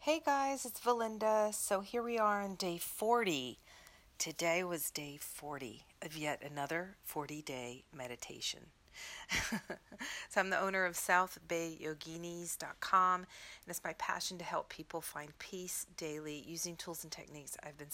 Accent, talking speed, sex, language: American, 140 wpm, female, English